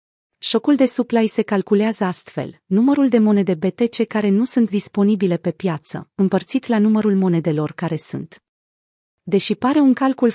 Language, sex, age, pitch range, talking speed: Romanian, female, 30-49, 180-225 Hz, 150 wpm